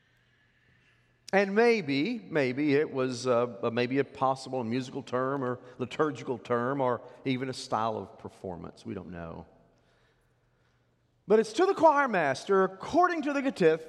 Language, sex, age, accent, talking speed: English, male, 40-59, American, 145 wpm